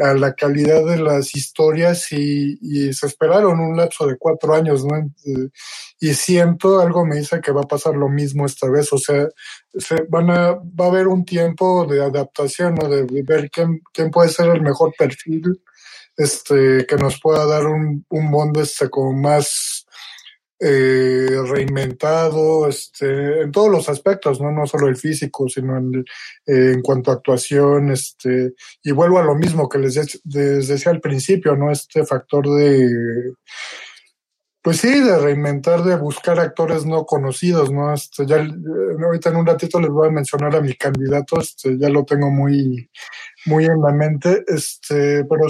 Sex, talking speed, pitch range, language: male, 175 wpm, 140-165 Hz, Spanish